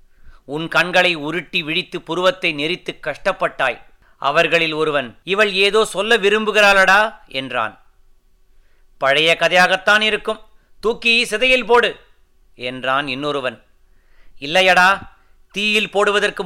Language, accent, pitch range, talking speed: Tamil, native, 145-195 Hz, 95 wpm